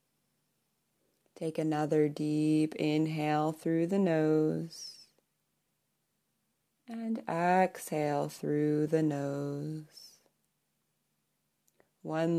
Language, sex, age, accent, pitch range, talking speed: English, female, 20-39, American, 150-175 Hz, 65 wpm